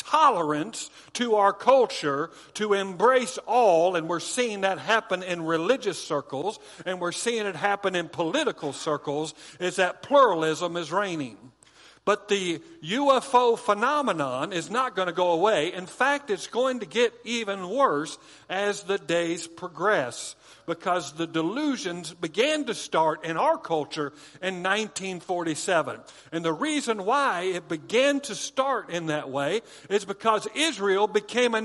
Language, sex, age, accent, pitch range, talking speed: English, male, 50-69, American, 185-260 Hz, 145 wpm